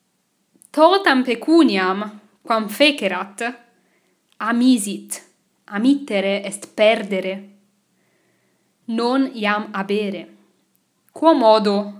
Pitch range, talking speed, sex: 200-235 Hz, 65 wpm, female